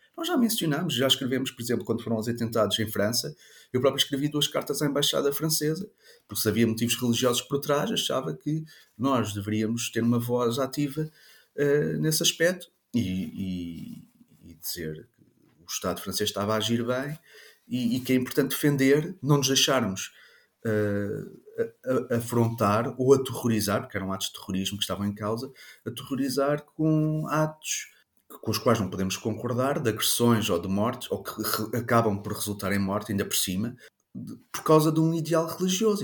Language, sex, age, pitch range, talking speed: Portuguese, male, 30-49, 105-145 Hz, 170 wpm